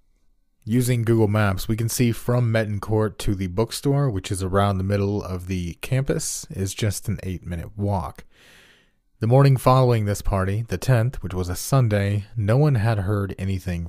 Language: English